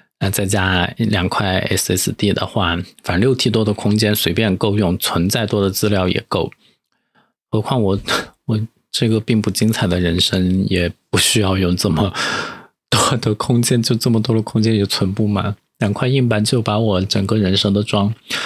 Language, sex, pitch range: Chinese, male, 95-120 Hz